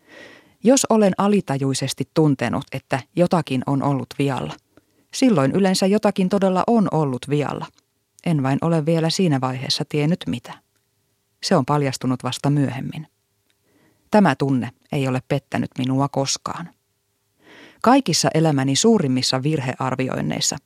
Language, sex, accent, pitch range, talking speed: Finnish, female, native, 130-165 Hz, 115 wpm